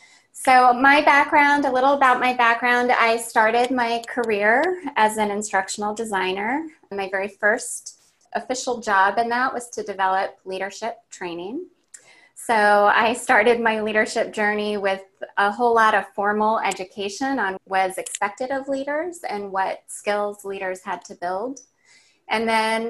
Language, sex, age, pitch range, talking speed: English, female, 20-39, 195-245 Hz, 145 wpm